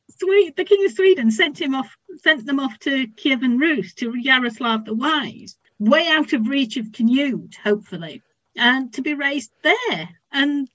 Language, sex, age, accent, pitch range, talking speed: English, female, 50-69, British, 215-265 Hz, 180 wpm